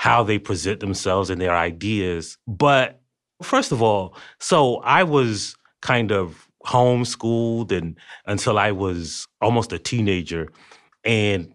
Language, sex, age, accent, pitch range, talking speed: English, male, 30-49, American, 100-130 Hz, 125 wpm